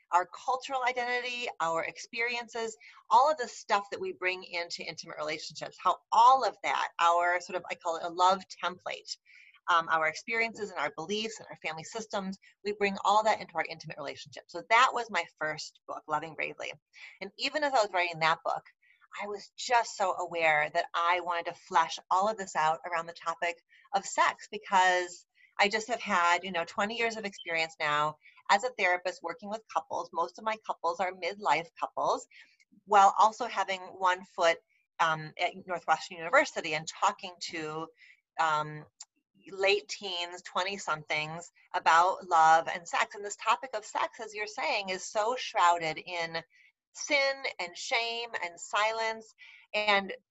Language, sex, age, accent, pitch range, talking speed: English, female, 30-49, American, 170-220 Hz, 170 wpm